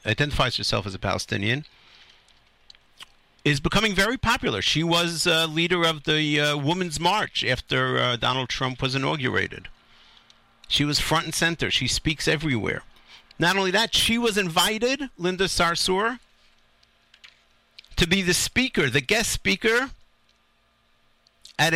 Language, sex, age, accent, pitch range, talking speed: English, male, 50-69, American, 125-195 Hz, 130 wpm